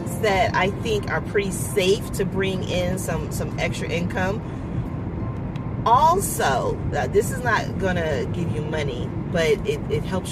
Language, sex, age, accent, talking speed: English, female, 40-59, American, 150 wpm